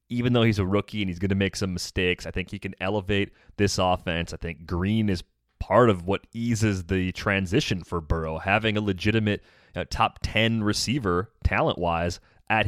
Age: 30-49